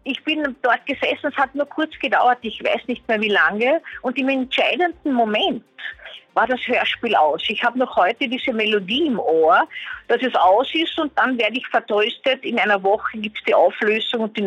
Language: German